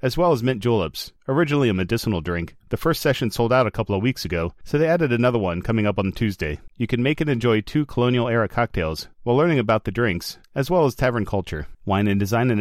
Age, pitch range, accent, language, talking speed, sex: 40-59, 100-125 Hz, American, English, 240 wpm, male